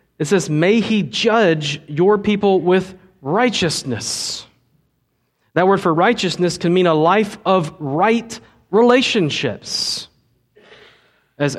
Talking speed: 110 wpm